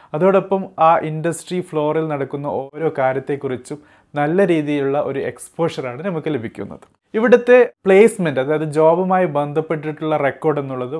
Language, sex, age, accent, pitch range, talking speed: Malayalam, male, 30-49, native, 140-170 Hz, 110 wpm